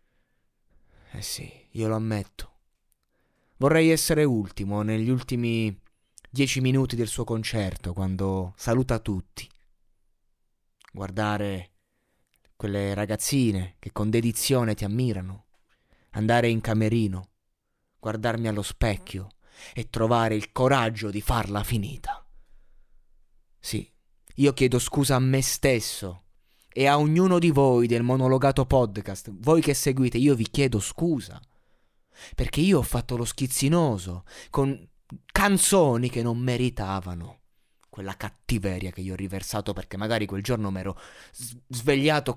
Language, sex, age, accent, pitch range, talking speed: Italian, male, 30-49, native, 100-130 Hz, 120 wpm